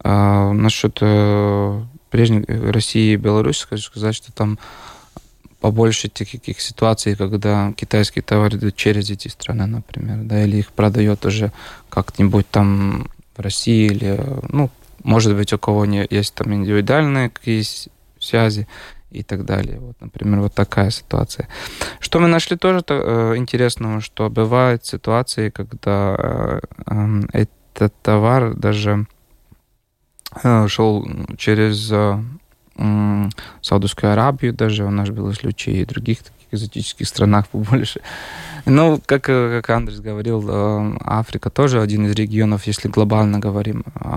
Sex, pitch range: male, 105-120 Hz